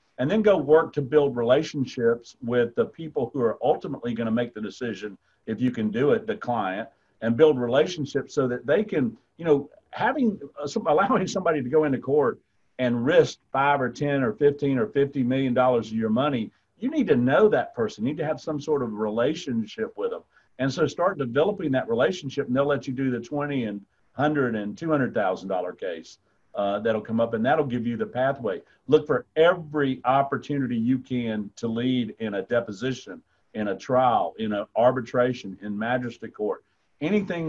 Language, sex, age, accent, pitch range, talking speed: English, male, 50-69, American, 120-150 Hz, 190 wpm